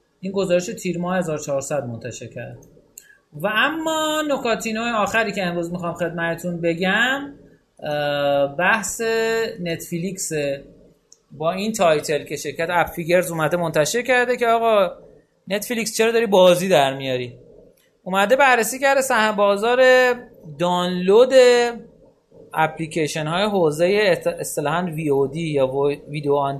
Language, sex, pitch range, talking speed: Persian, male, 150-215 Hz, 115 wpm